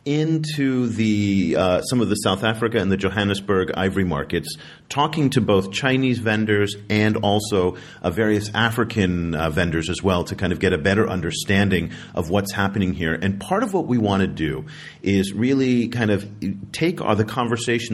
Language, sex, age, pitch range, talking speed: English, male, 40-59, 90-120 Hz, 180 wpm